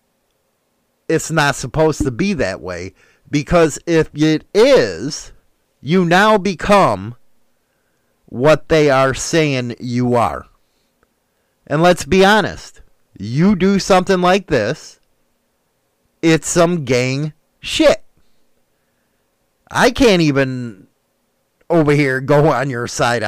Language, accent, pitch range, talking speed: English, American, 125-170 Hz, 110 wpm